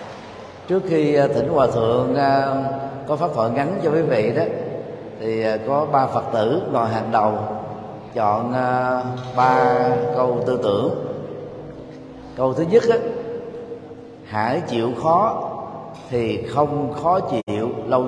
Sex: male